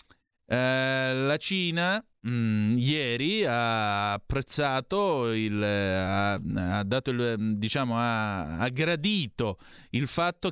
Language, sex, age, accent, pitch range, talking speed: Italian, male, 30-49, native, 105-135 Hz, 105 wpm